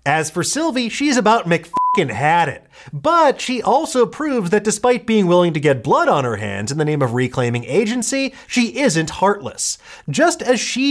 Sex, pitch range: male, 155-245 Hz